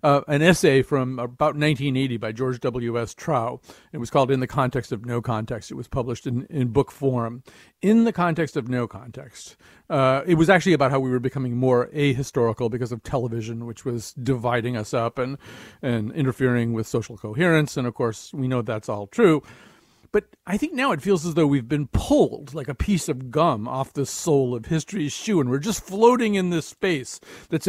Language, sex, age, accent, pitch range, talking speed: English, male, 50-69, American, 125-175 Hz, 210 wpm